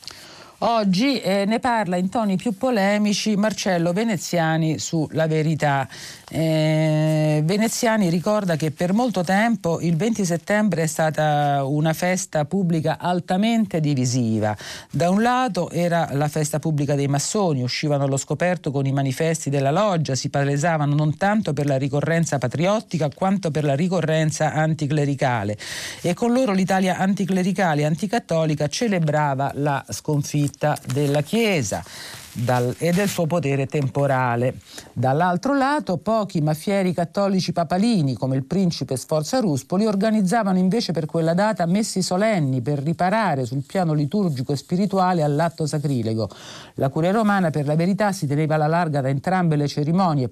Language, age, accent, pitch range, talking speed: Italian, 50-69, native, 140-190 Hz, 140 wpm